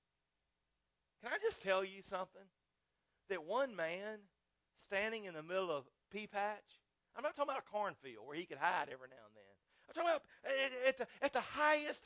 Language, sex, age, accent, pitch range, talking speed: English, male, 40-59, American, 200-305 Hz, 195 wpm